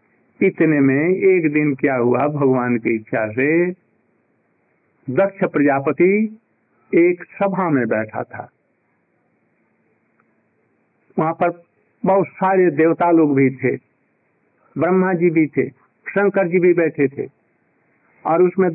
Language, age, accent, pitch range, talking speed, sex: Hindi, 50-69, native, 145-195 Hz, 115 wpm, male